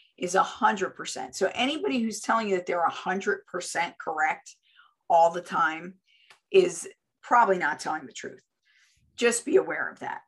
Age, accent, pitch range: 50-69, American, 180-225 Hz